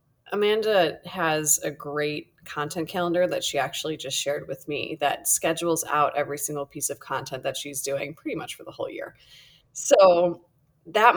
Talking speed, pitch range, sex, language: 170 wpm, 145-170 Hz, female, English